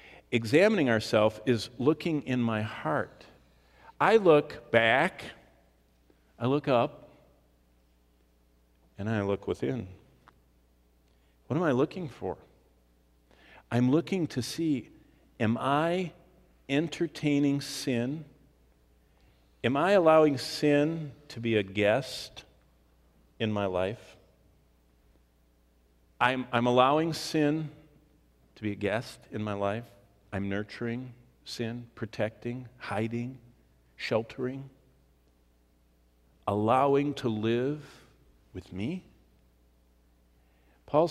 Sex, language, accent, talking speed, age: male, English, American, 95 wpm, 50-69